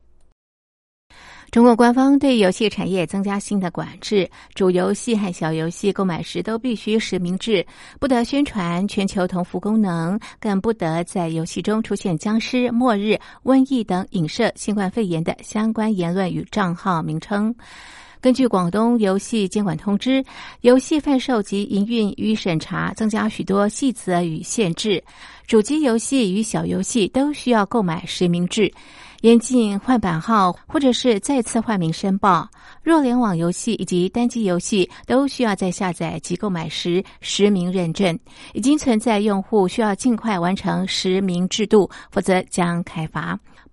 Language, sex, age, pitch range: Chinese, female, 50-69, 180-230 Hz